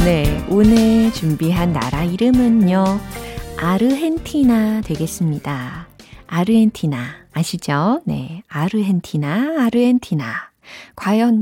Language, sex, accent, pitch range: Korean, female, native, 160-240 Hz